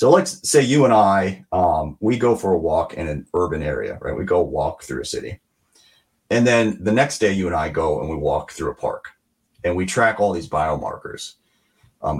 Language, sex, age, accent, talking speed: English, male, 40-59, American, 220 wpm